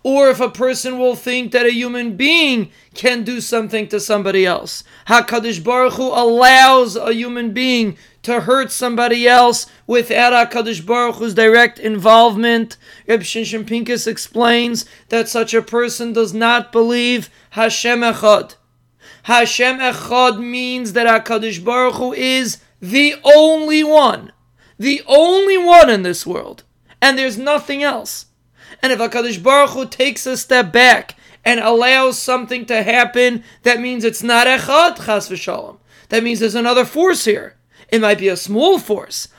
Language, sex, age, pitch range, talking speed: English, male, 30-49, 225-255 Hz, 150 wpm